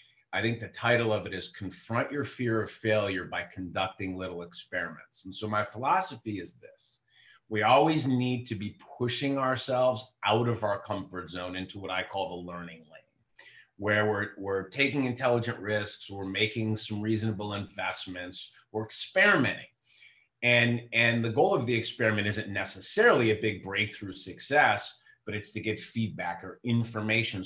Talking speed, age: 160 wpm, 30-49